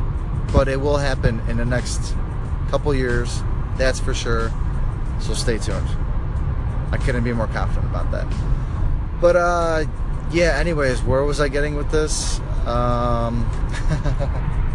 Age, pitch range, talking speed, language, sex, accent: 20-39, 105-135 Hz, 135 wpm, English, male, American